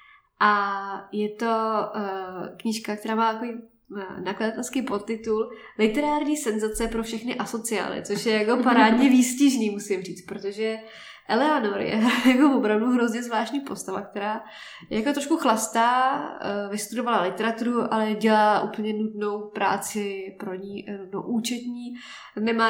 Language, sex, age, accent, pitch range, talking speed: Czech, female, 20-39, native, 210-240 Hz, 120 wpm